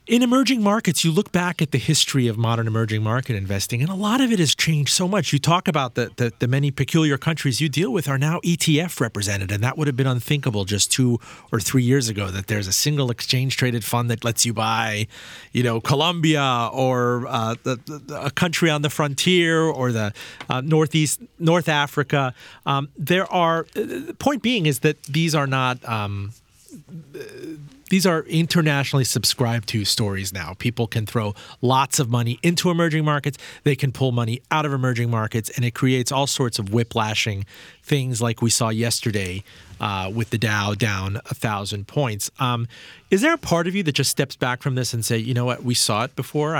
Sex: male